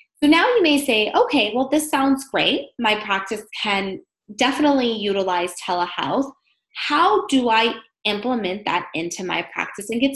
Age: 20-39